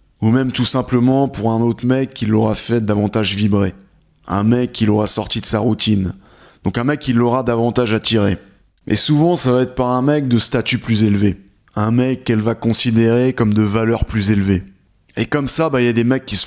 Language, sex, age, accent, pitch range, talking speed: French, male, 20-39, French, 105-125 Hz, 220 wpm